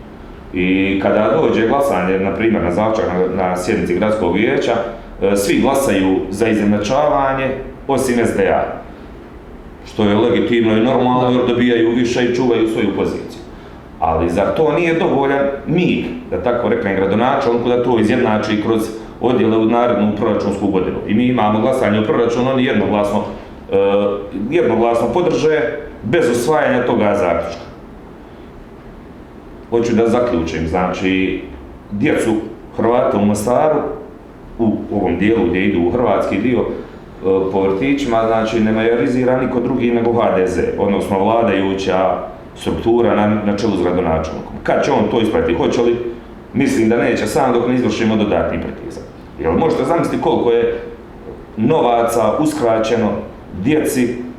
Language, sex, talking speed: Croatian, male, 135 wpm